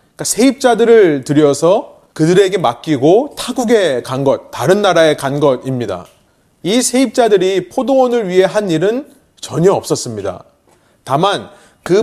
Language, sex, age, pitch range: Korean, male, 30-49, 150-230 Hz